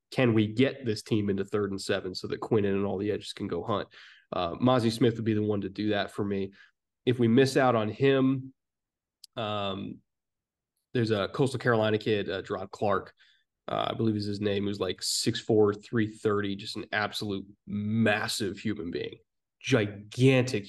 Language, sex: English, male